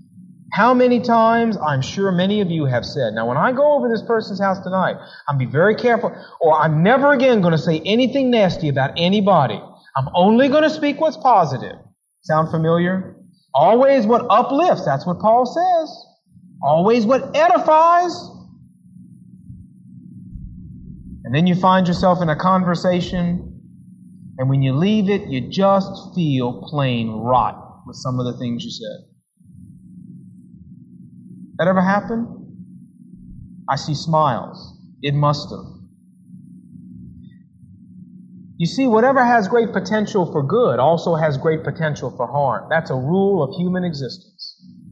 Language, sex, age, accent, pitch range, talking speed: English, male, 40-59, American, 150-210 Hz, 145 wpm